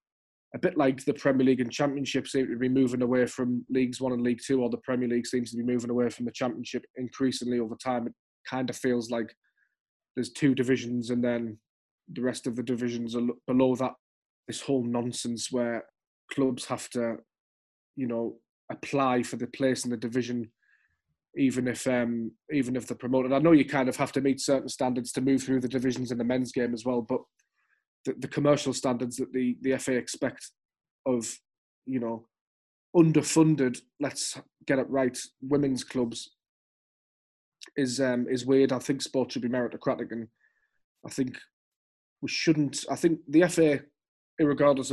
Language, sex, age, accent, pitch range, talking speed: English, male, 20-39, British, 120-130 Hz, 180 wpm